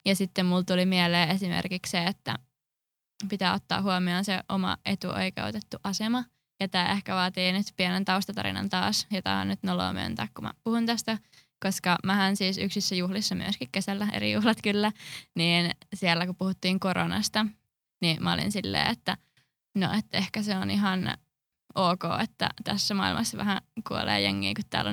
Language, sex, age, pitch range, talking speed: Finnish, female, 20-39, 175-200 Hz, 165 wpm